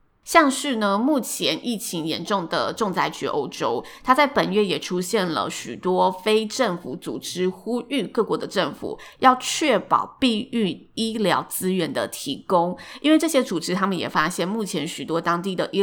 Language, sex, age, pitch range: Chinese, female, 20-39, 180-255 Hz